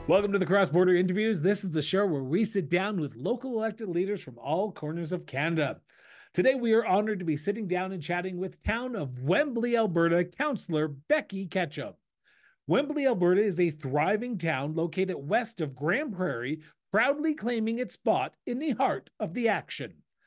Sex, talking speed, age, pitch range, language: male, 185 wpm, 40-59, 170-230 Hz, English